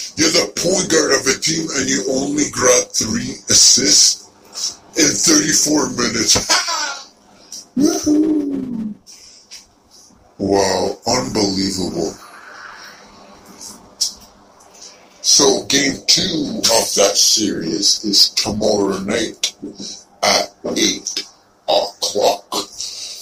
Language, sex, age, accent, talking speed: English, female, 60-79, American, 80 wpm